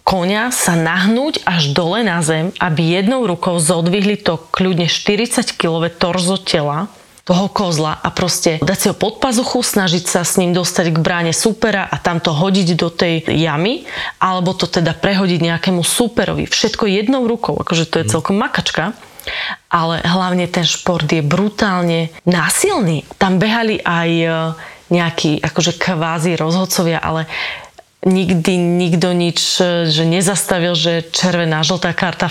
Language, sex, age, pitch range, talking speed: Slovak, female, 20-39, 165-195 Hz, 145 wpm